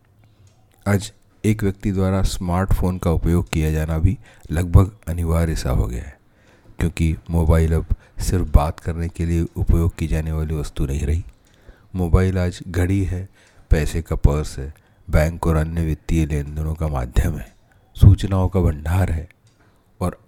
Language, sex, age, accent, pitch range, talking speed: Hindi, male, 40-59, native, 80-95 Hz, 155 wpm